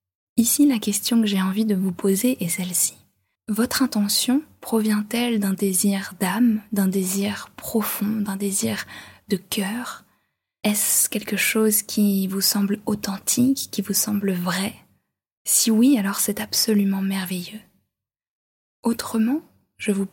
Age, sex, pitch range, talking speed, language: 20-39, female, 190-225 Hz, 130 wpm, French